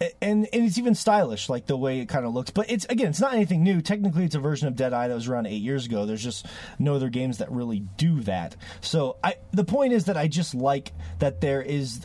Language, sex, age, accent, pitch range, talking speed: English, male, 30-49, American, 110-160 Hz, 265 wpm